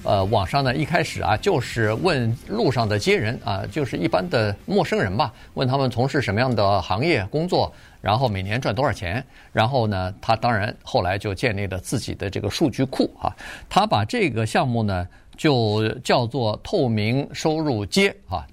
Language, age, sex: Chinese, 50-69, male